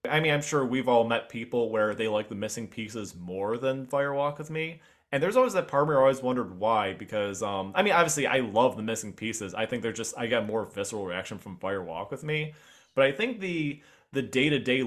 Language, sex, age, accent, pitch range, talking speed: English, male, 20-39, American, 105-135 Hz, 240 wpm